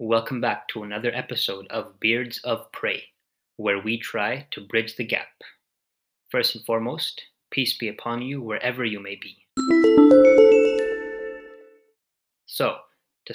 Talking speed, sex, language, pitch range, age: 130 wpm, male, English, 105-120 Hz, 20-39